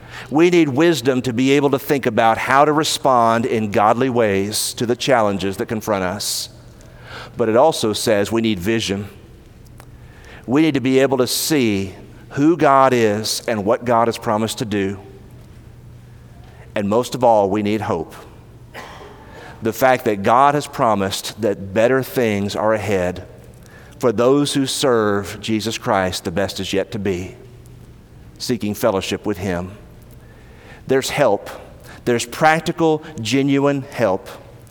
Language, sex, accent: English, male, American